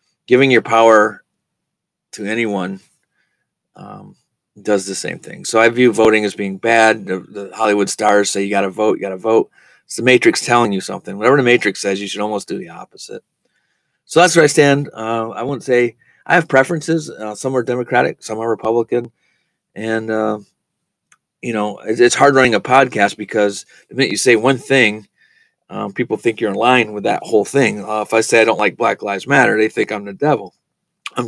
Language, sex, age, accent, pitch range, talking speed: English, male, 30-49, American, 105-125 Hz, 205 wpm